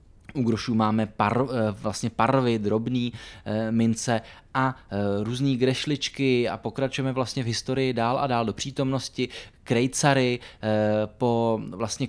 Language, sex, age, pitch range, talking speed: Czech, male, 20-39, 105-125 Hz, 120 wpm